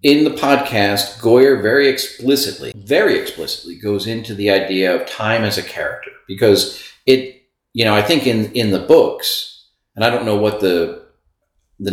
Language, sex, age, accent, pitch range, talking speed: English, male, 50-69, American, 95-130 Hz, 170 wpm